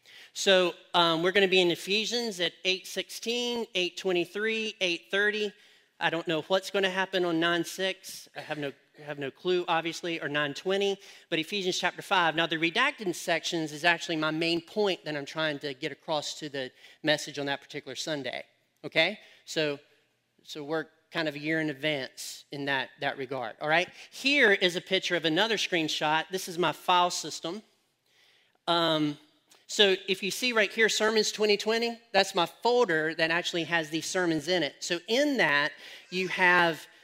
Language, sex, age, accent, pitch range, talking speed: English, male, 40-59, American, 160-195 Hz, 175 wpm